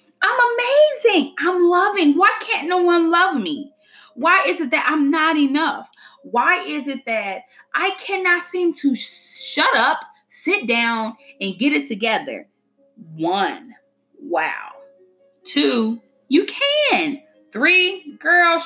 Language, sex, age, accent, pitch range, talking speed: English, female, 20-39, American, 195-320 Hz, 130 wpm